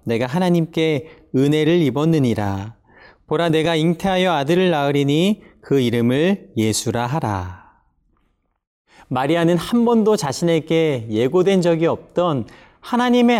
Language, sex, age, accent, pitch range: Korean, male, 40-59, native, 125-180 Hz